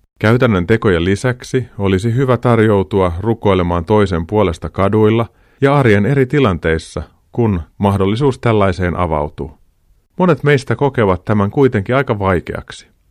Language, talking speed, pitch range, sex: Finnish, 115 wpm, 85-120 Hz, male